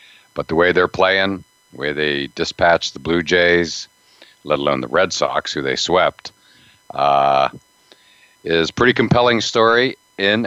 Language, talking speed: English, 155 wpm